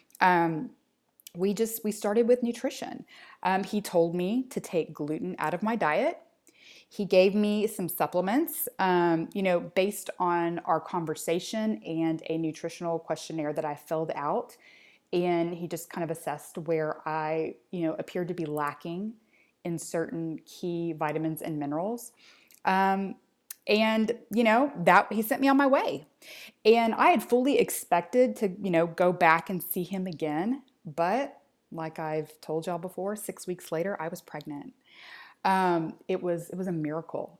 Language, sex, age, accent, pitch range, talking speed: English, female, 20-39, American, 165-220 Hz, 165 wpm